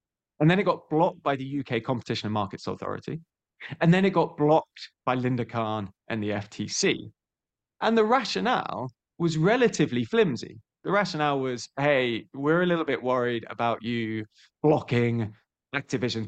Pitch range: 115-150 Hz